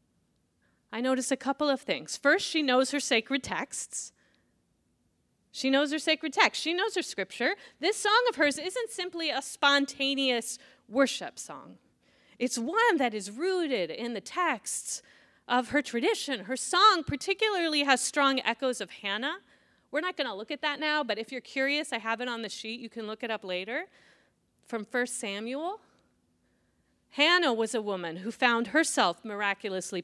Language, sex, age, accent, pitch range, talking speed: English, female, 30-49, American, 215-300 Hz, 170 wpm